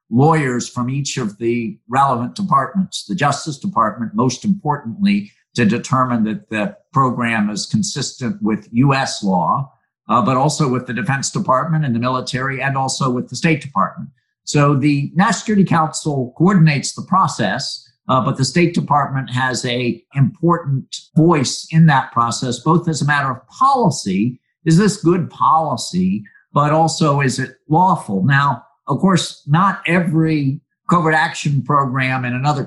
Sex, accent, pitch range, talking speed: male, American, 120-160 Hz, 150 wpm